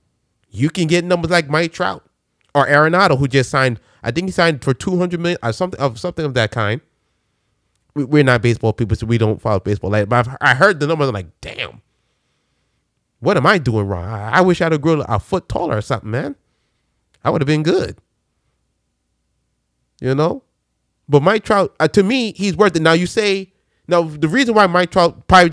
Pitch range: 120-175 Hz